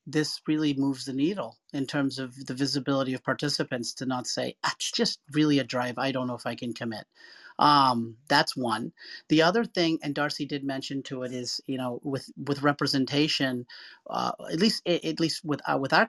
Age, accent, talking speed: 40-59, American, 200 wpm